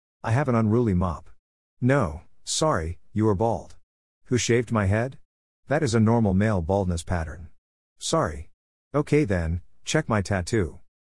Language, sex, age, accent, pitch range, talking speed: English, male, 50-69, American, 85-120 Hz, 145 wpm